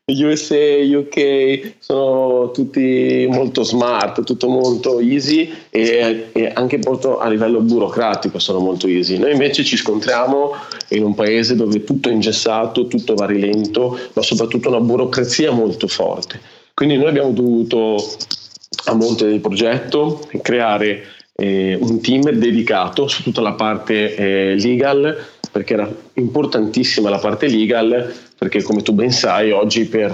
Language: Italian